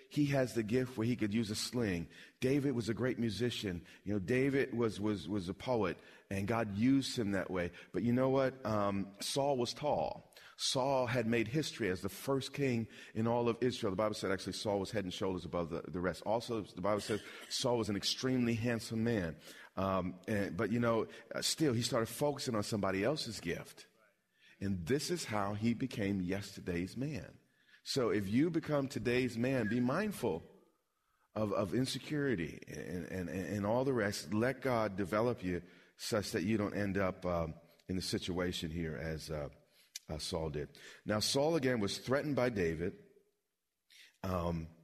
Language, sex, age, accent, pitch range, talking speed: English, male, 40-59, American, 95-125 Hz, 185 wpm